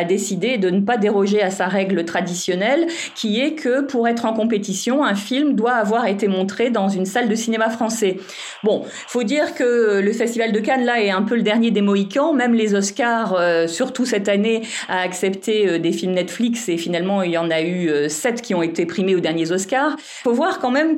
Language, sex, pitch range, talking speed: French, female, 190-240 Hz, 215 wpm